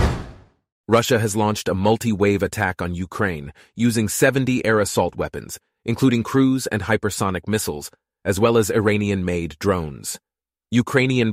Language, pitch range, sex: English, 90-115 Hz, male